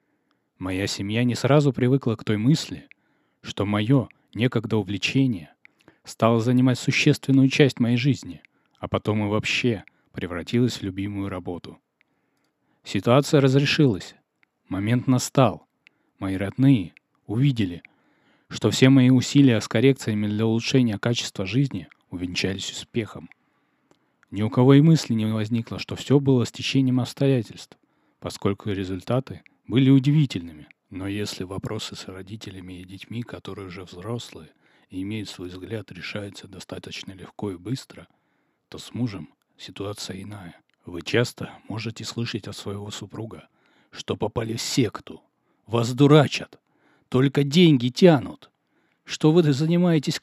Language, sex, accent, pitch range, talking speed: Russian, male, native, 100-135 Hz, 125 wpm